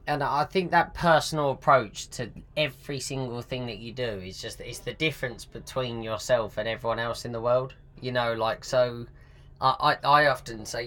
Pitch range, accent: 110-135 Hz, British